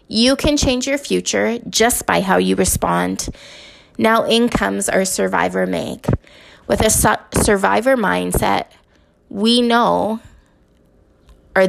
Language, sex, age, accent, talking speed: English, female, 20-39, American, 120 wpm